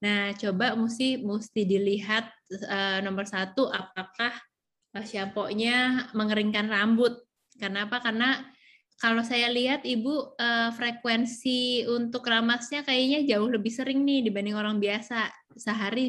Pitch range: 200-245 Hz